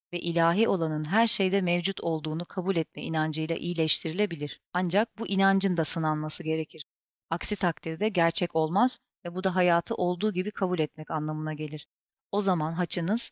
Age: 30-49